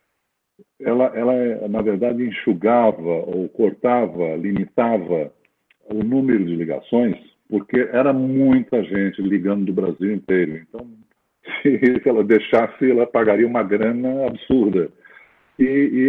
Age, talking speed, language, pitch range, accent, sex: 50-69, 115 wpm, Portuguese, 100-135 Hz, Brazilian, male